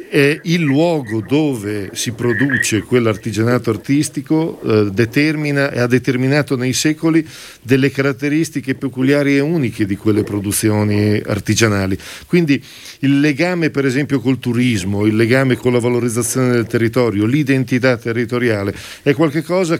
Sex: male